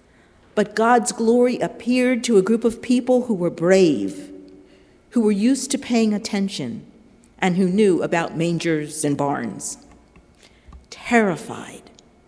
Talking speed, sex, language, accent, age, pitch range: 125 wpm, female, English, American, 50-69, 165-230 Hz